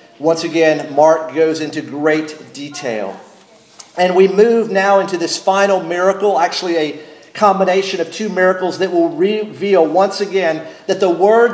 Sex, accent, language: male, American, English